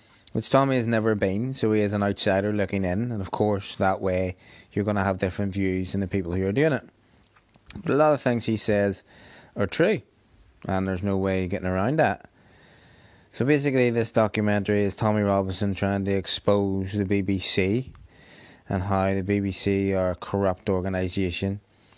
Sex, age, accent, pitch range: male, 20-39, British, 95-110 Hz